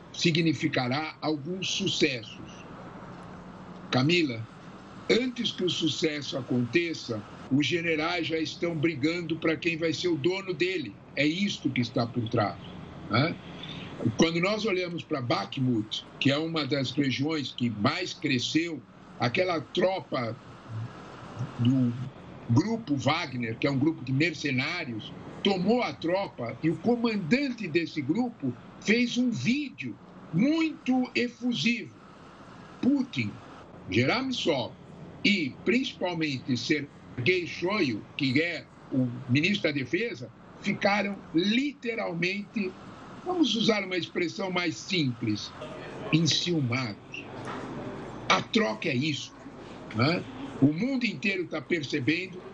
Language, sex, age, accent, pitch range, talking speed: Portuguese, male, 60-79, Brazilian, 140-200 Hz, 110 wpm